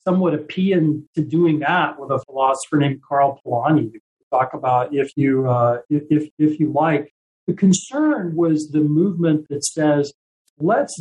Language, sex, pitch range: English, male, 145-170 Hz